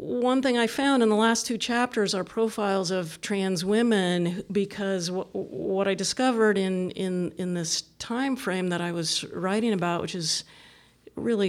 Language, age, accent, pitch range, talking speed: English, 40-59, American, 160-190 Hz, 170 wpm